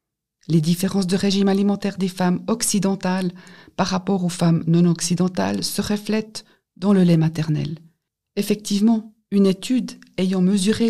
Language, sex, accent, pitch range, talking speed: German, female, French, 170-205 Hz, 130 wpm